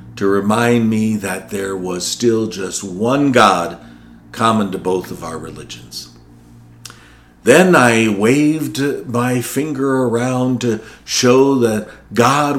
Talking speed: 125 wpm